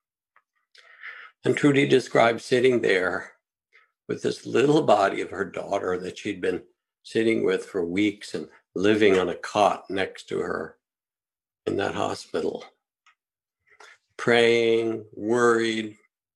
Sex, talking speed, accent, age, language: male, 115 wpm, American, 60-79, English